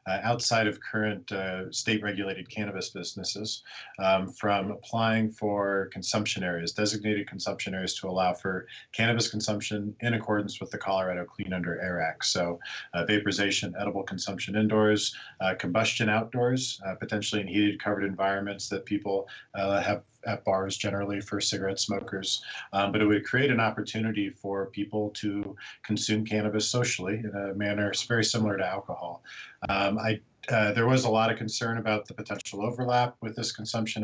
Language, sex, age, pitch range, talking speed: English, male, 40-59, 100-110 Hz, 165 wpm